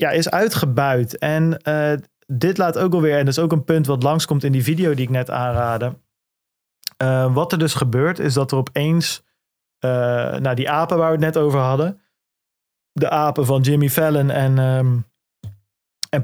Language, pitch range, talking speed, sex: Dutch, 125-160 Hz, 190 wpm, male